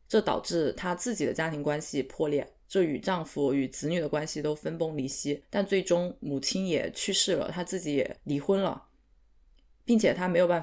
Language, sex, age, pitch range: Chinese, female, 20-39, 150-195 Hz